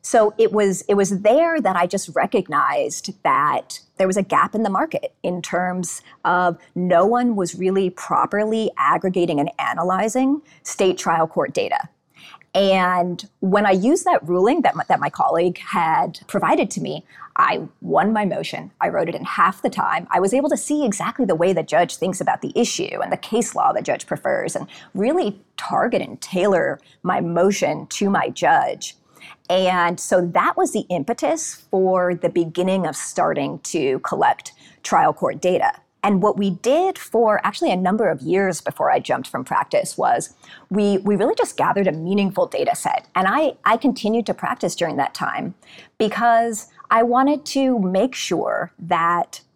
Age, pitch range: 30-49, 180-235 Hz